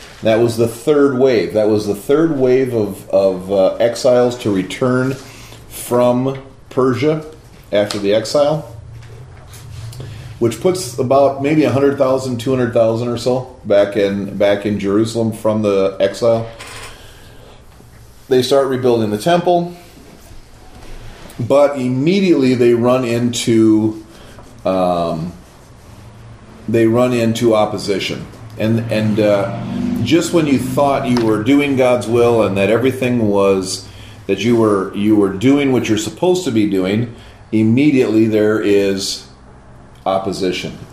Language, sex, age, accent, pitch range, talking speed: English, male, 40-59, American, 105-130 Hz, 125 wpm